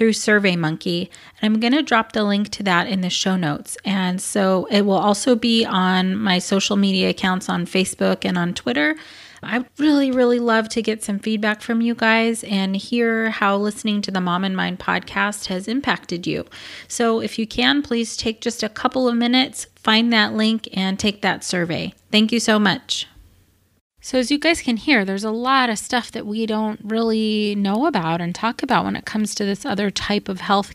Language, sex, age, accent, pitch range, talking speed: English, female, 30-49, American, 190-230 Hz, 205 wpm